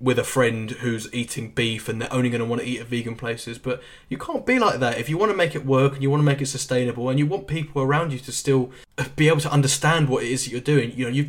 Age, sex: 10-29, male